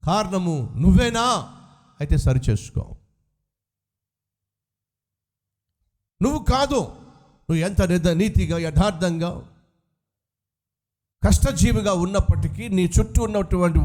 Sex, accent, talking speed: male, native, 75 wpm